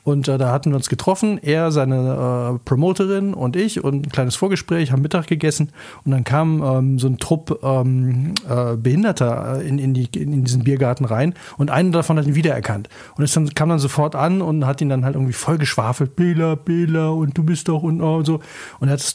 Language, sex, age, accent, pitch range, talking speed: German, male, 40-59, German, 130-160 Hz, 225 wpm